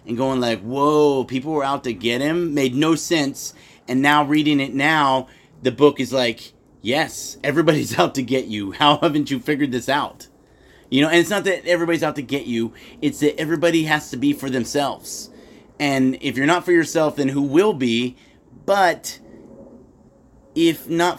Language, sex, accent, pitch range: English, male, American, 125-150 Hz